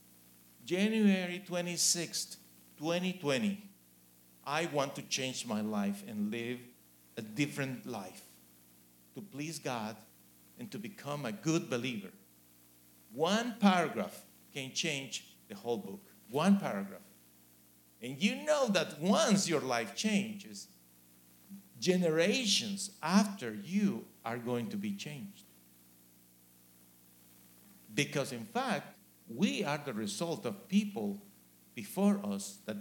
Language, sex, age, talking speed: English, male, 50-69, 110 wpm